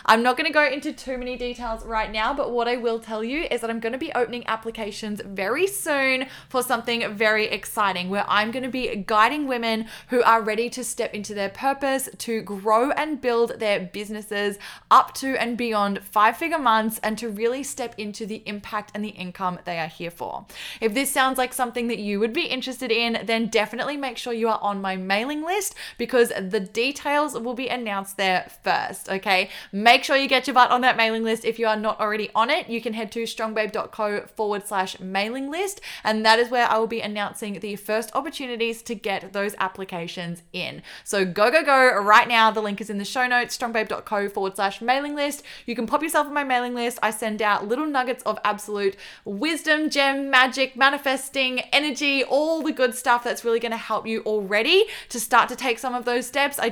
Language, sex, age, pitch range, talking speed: English, female, 10-29, 210-255 Hz, 215 wpm